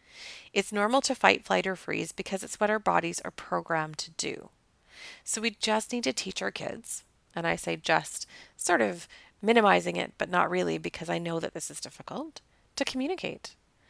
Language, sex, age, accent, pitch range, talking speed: English, female, 30-49, American, 185-250 Hz, 190 wpm